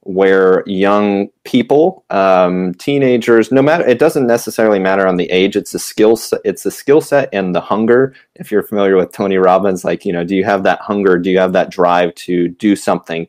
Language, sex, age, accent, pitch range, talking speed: English, male, 30-49, American, 95-120 Hz, 210 wpm